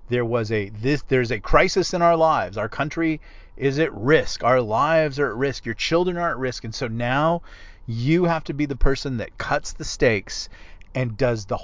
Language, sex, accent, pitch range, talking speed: English, male, American, 100-140 Hz, 210 wpm